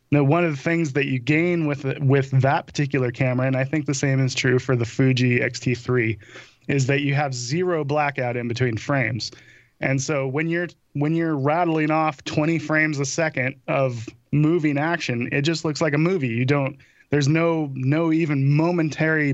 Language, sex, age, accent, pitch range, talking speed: English, male, 20-39, American, 125-155 Hz, 190 wpm